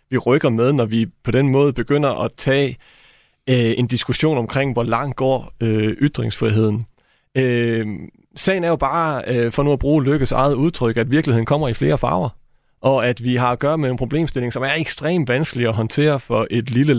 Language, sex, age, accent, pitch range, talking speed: Danish, male, 30-49, native, 115-140 Hz, 200 wpm